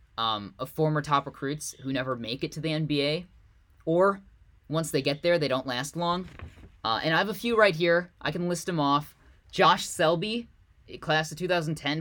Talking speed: 190 wpm